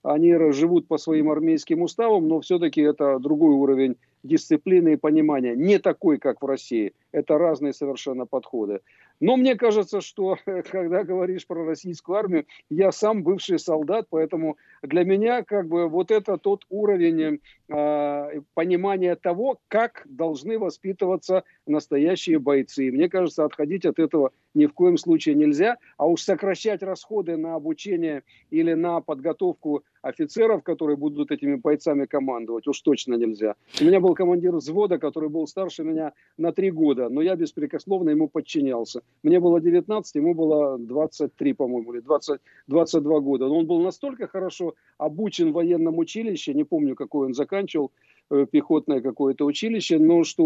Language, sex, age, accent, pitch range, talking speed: Russian, male, 50-69, native, 150-195 Hz, 150 wpm